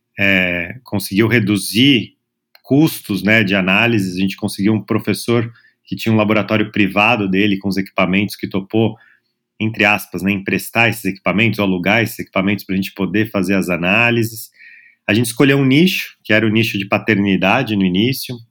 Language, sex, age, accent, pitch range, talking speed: Portuguese, male, 40-59, Brazilian, 95-110 Hz, 175 wpm